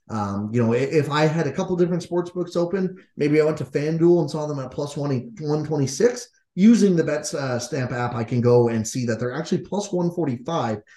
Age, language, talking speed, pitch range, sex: 30-49, English, 210 wpm, 110-160 Hz, male